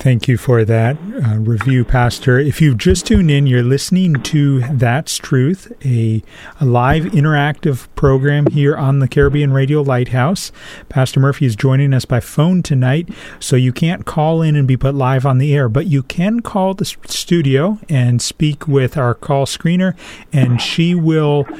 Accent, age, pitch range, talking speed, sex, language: American, 40-59, 125-170 Hz, 175 wpm, male, English